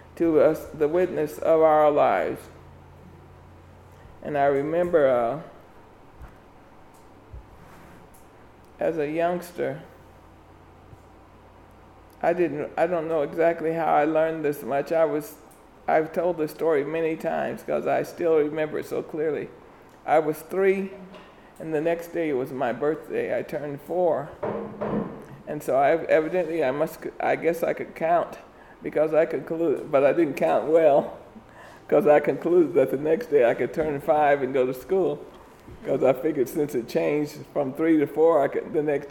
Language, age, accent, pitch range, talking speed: English, 60-79, American, 140-170 Hz, 155 wpm